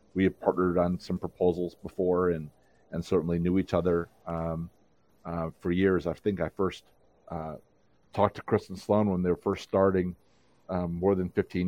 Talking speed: 185 wpm